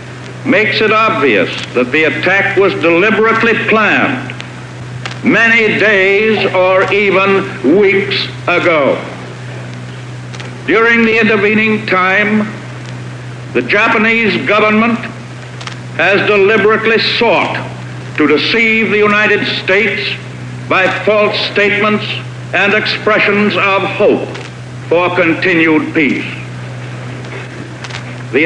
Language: English